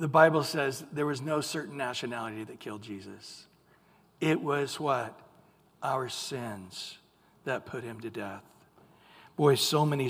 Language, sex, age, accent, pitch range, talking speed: English, male, 60-79, American, 135-155 Hz, 145 wpm